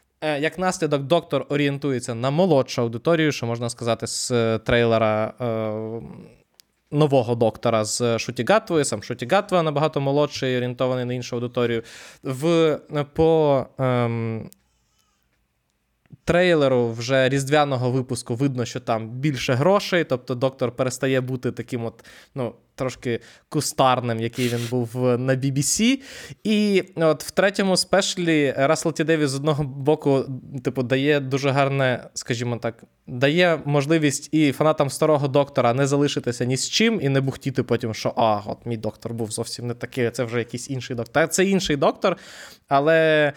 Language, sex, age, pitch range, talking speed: Ukrainian, male, 20-39, 120-150 Hz, 140 wpm